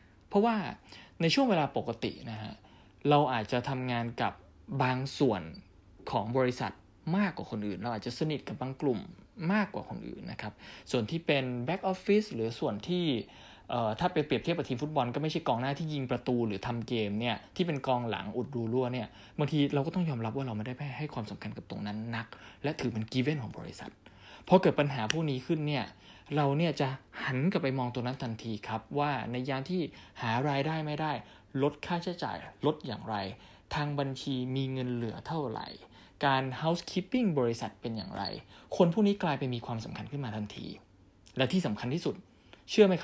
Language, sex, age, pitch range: Thai, male, 20-39, 110-150 Hz